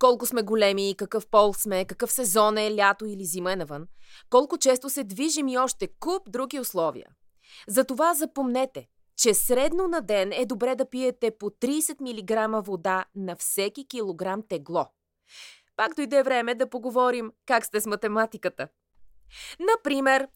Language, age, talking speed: Bulgarian, 20-39, 150 wpm